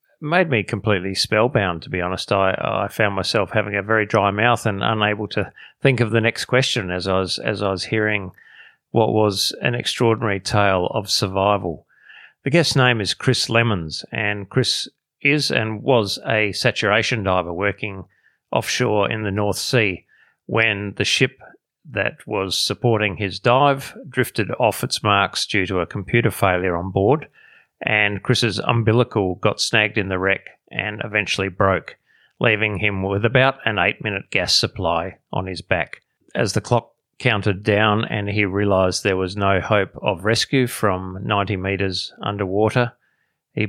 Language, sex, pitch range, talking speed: English, male, 100-115 Hz, 160 wpm